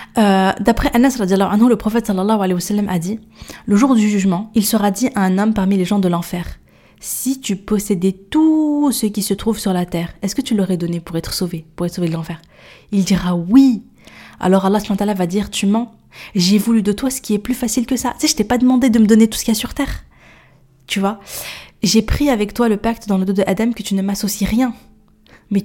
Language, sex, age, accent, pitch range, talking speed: French, female, 20-39, French, 195-235 Hz, 240 wpm